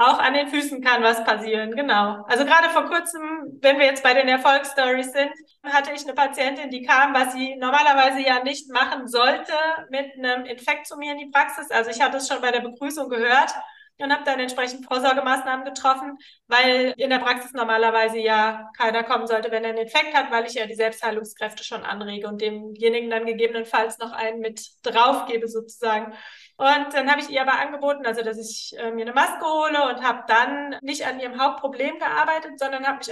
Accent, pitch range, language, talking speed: German, 230-280 Hz, German, 200 wpm